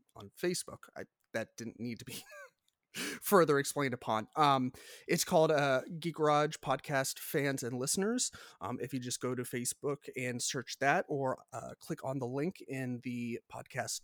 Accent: American